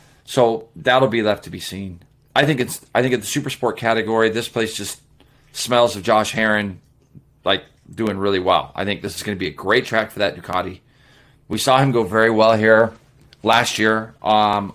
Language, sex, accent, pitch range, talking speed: English, male, American, 105-125 Hz, 210 wpm